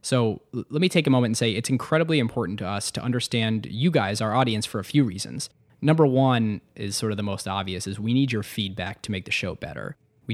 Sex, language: male, English